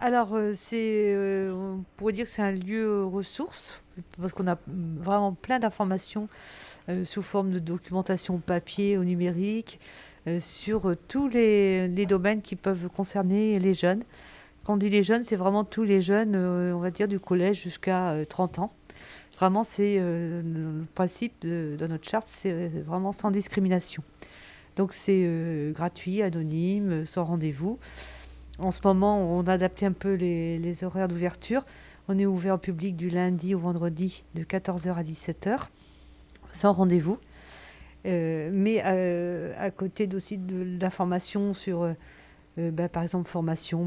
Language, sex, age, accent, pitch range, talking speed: French, female, 50-69, French, 165-195 Hz, 150 wpm